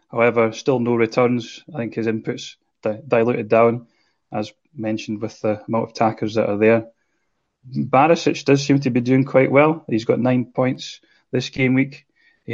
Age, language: 30-49, English